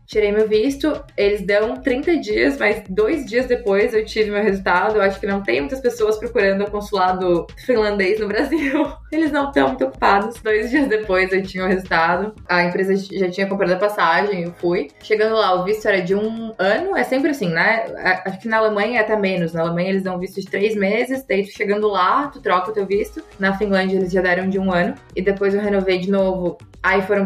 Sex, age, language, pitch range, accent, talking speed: female, 20-39, Portuguese, 180-215 Hz, Brazilian, 220 wpm